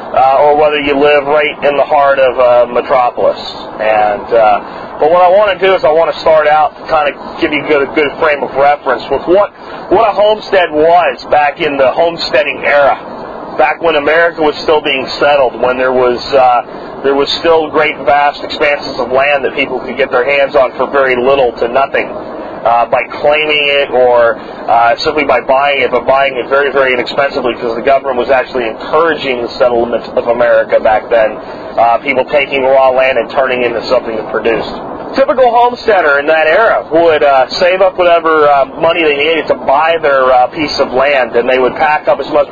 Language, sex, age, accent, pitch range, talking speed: English, male, 40-59, American, 130-155 Hz, 210 wpm